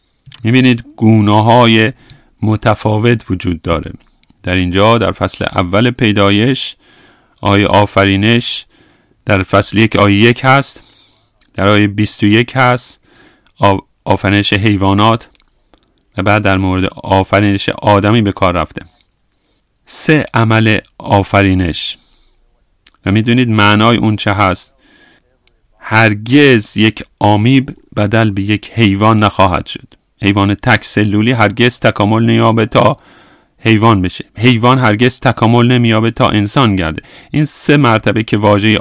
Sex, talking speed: male, 115 wpm